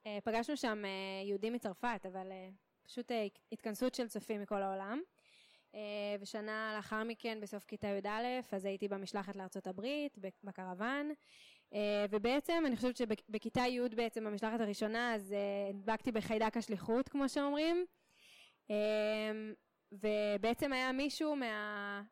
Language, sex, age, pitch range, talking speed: Hebrew, female, 20-39, 205-240 Hz, 135 wpm